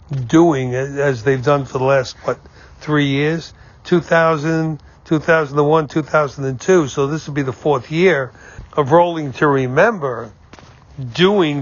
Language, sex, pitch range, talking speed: English, male, 135-160 Hz, 130 wpm